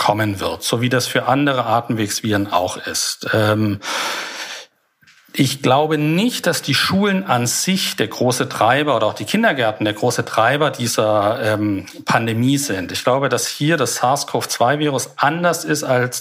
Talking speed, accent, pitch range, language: 150 wpm, German, 115-155 Hz, German